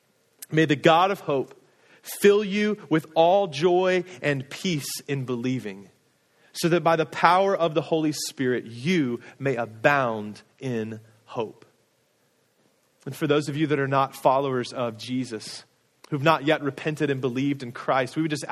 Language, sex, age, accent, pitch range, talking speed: English, male, 30-49, American, 130-170 Hz, 165 wpm